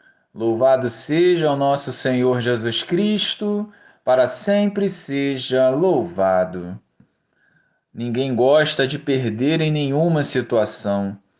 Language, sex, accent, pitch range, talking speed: Portuguese, male, Brazilian, 120-180 Hz, 95 wpm